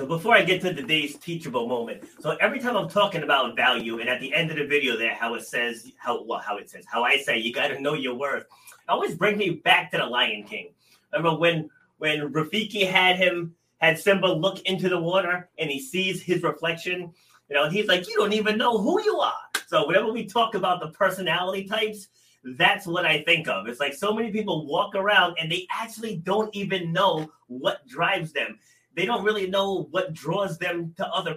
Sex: male